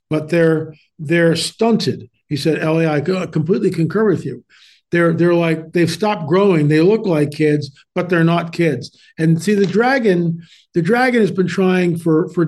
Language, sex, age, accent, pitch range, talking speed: English, male, 50-69, American, 150-180 Hz, 180 wpm